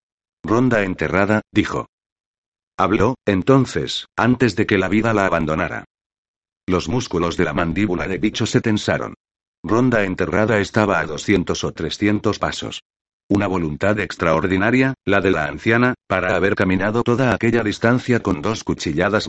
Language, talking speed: Spanish, 140 wpm